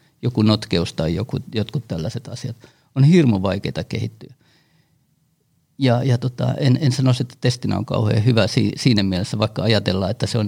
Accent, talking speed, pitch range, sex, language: native, 170 wpm, 115-140 Hz, male, Finnish